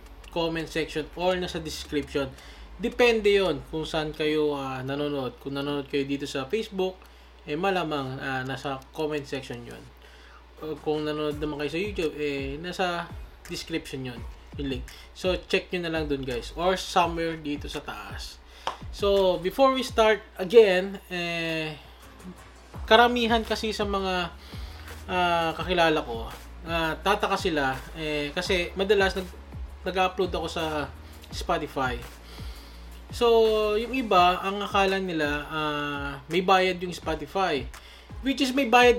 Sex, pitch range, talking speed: male, 140-195 Hz, 135 wpm